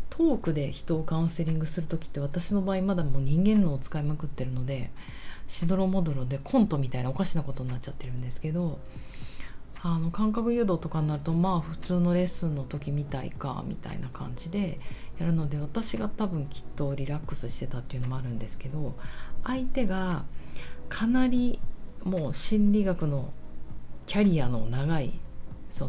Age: 40-59